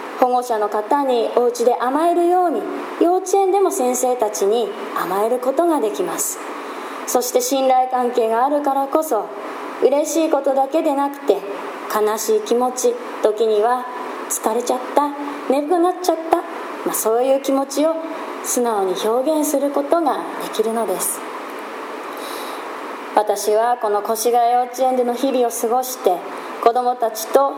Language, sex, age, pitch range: Japanese, female, 20-39, 230-300 Hz